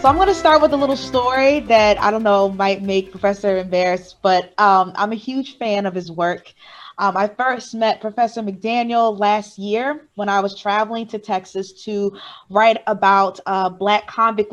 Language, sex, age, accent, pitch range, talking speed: English, female, 20-39, American, 195-245 Hz, 190 wpm